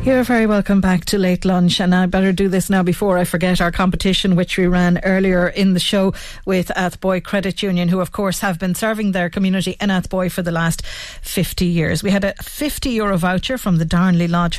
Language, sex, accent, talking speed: English, female, Irish, 220 wpm